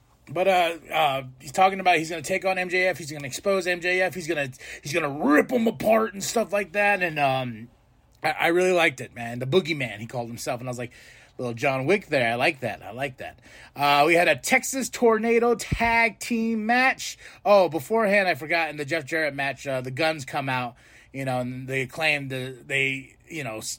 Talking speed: 215 wpm